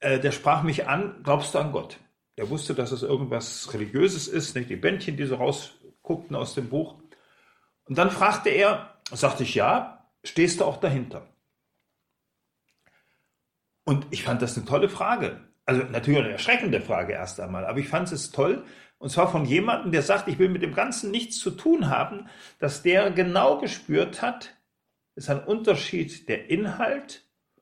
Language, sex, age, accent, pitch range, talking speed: German, male, 40-59, German, 140-195 Hz, 170 wpm